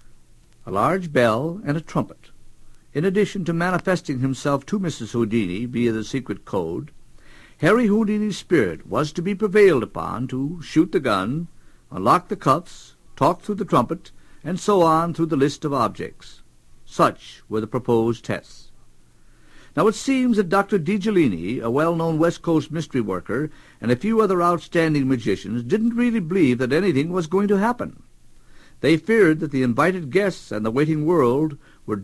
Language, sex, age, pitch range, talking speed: English, male, 60-79, 125-195 Hz, 165 wpm